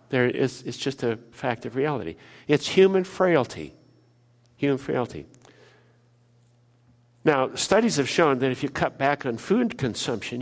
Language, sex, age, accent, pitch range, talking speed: English, male, 60-79, American, 120-155 Hz, 145 wpm